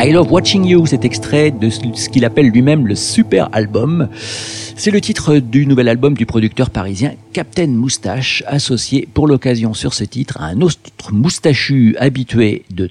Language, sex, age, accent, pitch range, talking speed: French, male, 50-69, French, 110-150 Hz, 170 wpm